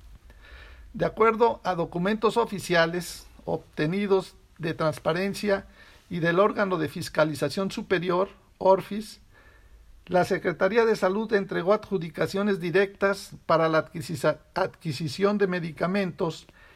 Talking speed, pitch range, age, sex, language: 95 wpm, 165-200 Hz, 60-79, male, Spanish